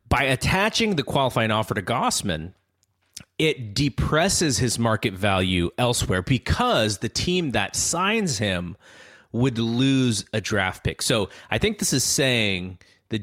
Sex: male